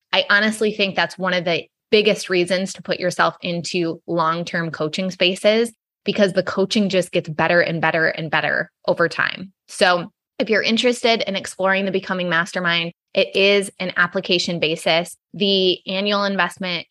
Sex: female